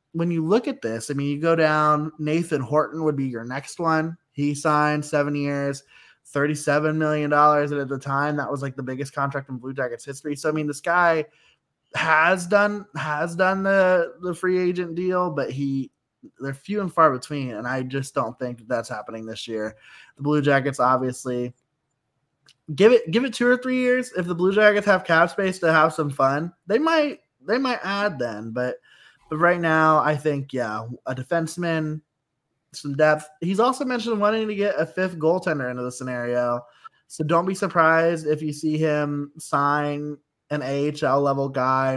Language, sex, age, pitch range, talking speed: English, male, 20-39, 135-170 Hz, 190 wpm